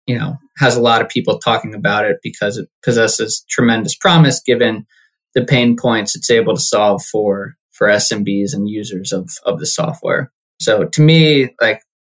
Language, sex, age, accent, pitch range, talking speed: English, male, 20-39, American, 115-140 Hz, 180 wpm